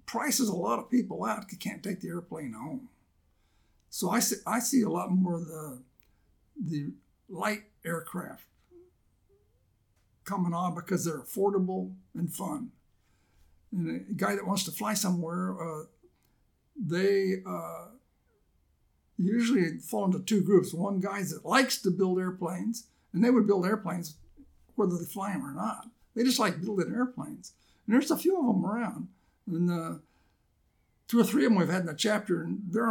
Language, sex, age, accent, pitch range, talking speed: English, male, 60-79, American, 170-215 Hz, 170 wpm